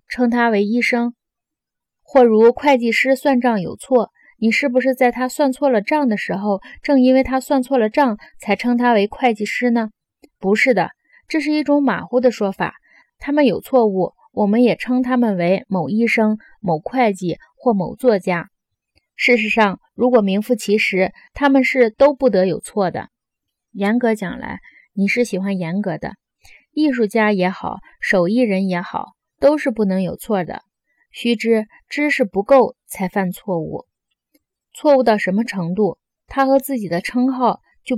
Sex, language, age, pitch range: female, Chinese, 20-39, 200-255 Hz